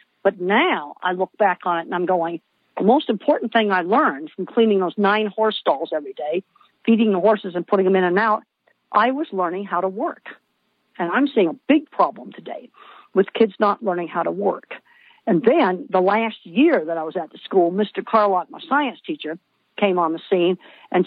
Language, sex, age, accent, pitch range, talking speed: English, female, 50-69, American, 180-220 Hz, 210 wpm